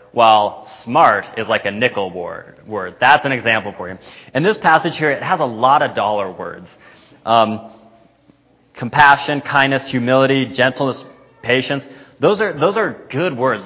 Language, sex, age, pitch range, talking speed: English, male, 20-39, 110-140 Hz, 155 wpm